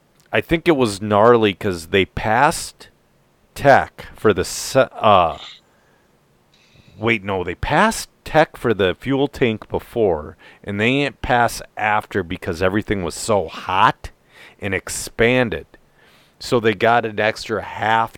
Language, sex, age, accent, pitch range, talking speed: English, male, 40-59, American, 95-120 Hz, 135 wpm